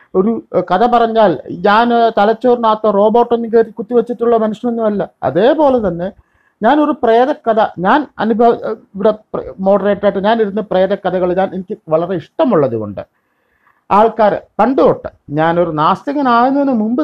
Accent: native